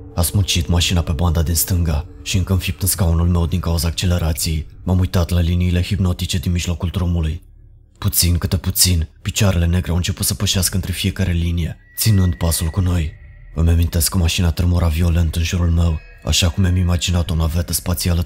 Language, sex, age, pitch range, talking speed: Romanian, male, 20-39, 85-95 Hz, 185 wpm